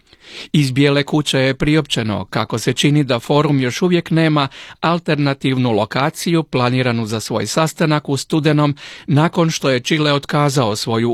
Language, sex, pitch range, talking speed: Croatian, male, 130-165 Hz, 140 wpm